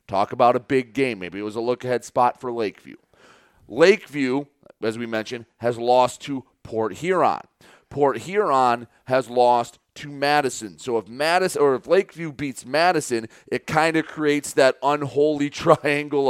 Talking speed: 160 wpm